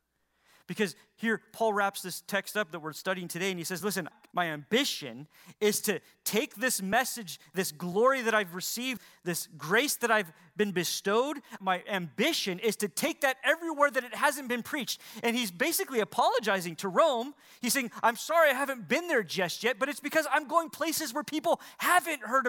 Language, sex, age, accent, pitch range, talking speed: English, male, 30-49, American, 170-255 Hz, 190 wpm